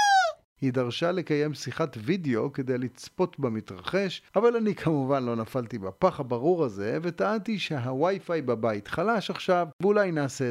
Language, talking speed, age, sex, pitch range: Hebrew, 130 wpm, 40-59, male, 120-175 Hz